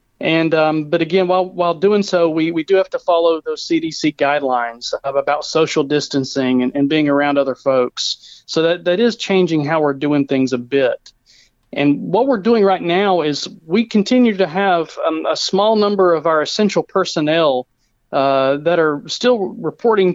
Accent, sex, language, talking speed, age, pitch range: American, male, English, 180 wpm, 40-59, 145-180 Hz